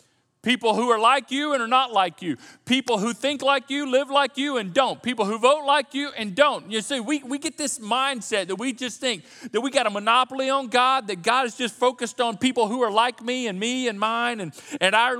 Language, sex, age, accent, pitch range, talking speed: English, male, 40-59, American, 215-270 Hz, 250 wpm